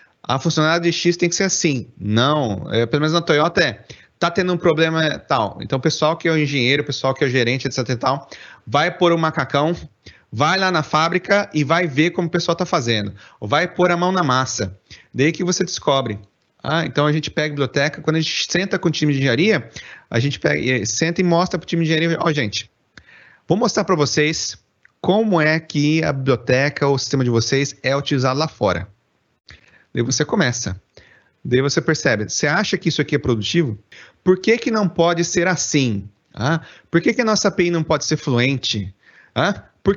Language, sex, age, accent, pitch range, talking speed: Portuguese, male, 30-49, Brazilian, 130-175 Hz, 215 wpm